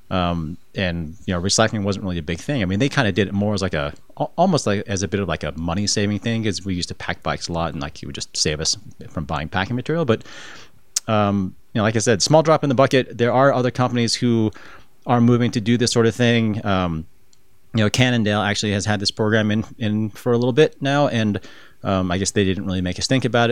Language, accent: English, American